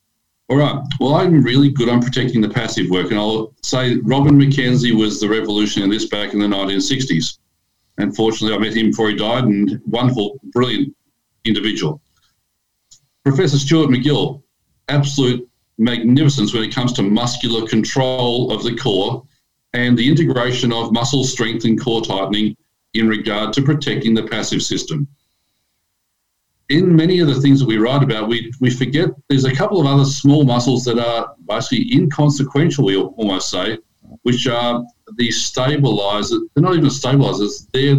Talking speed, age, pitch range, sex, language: 160 wpm, 50-69, 110-140 Hz, male, English